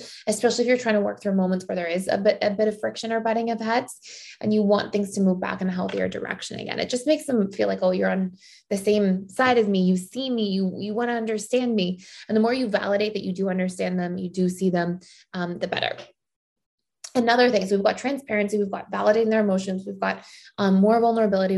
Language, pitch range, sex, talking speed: English, 190-230 Hz, female, 250 wpm